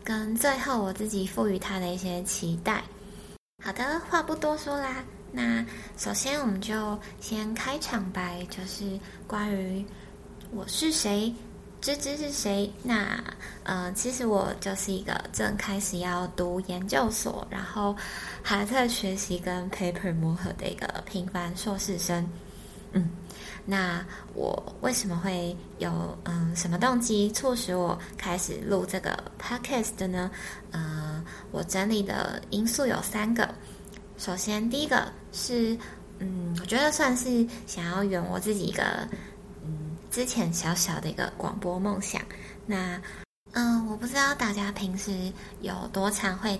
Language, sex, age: Chinese, female, 20-39